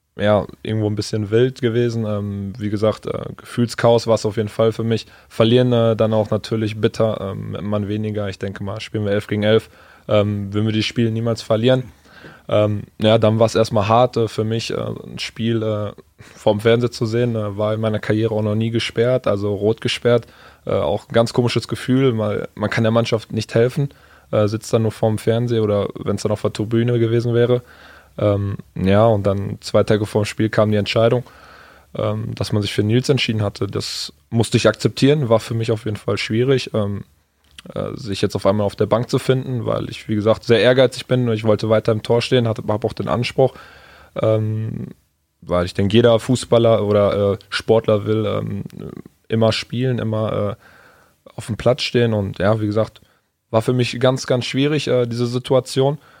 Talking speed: 205 wpm